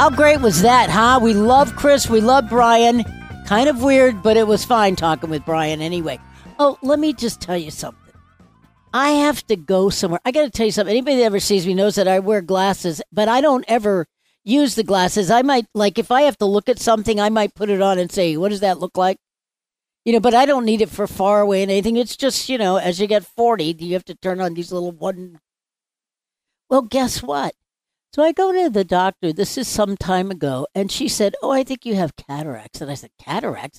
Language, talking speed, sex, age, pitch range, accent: English, 240 wpm, female, 60-79, 185-240 Hz, American